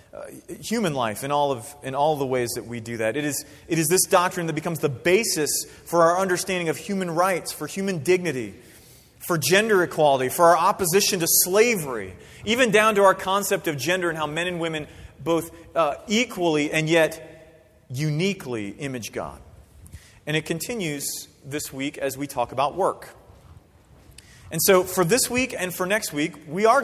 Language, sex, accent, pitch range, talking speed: English, male, American, 145-180 Hz, 185 wpm